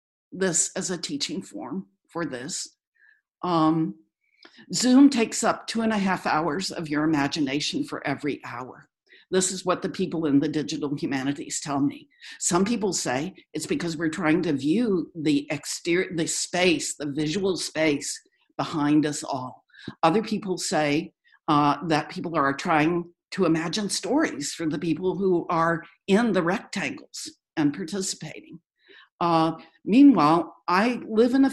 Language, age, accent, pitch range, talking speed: English, 60-79, American, 150-200 Hz, 150 wpm